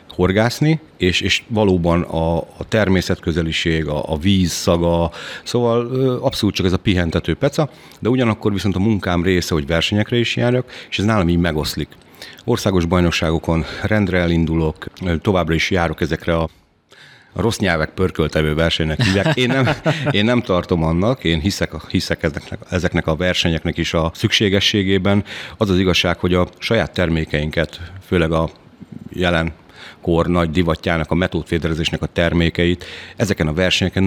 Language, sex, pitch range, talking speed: Hungarian, male, 85-95 Hz, 145 wpm